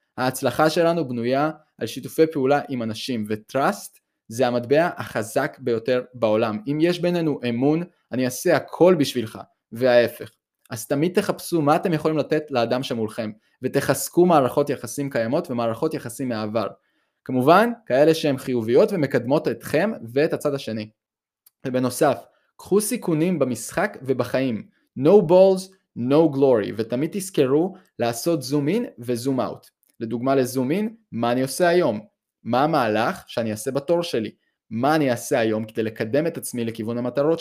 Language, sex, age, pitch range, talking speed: Hebrew, male, 20-39, 120-160 Hz, 135 wpm